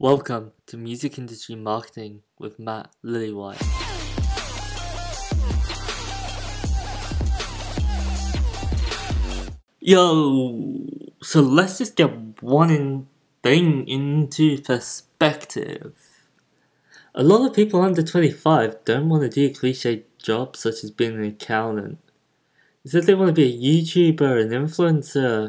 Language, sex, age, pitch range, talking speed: English, male, 20-39, 110-150 Hz, 105 wpm